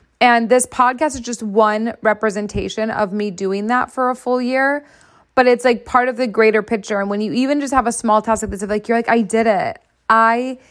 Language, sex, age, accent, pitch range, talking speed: English, female, 20-39, American, 210-240 Hz, 230 wpm